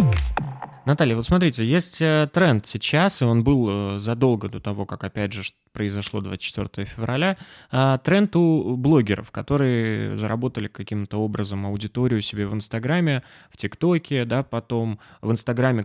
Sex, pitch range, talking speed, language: male, 110-140 Hz, 135 wpm, Russian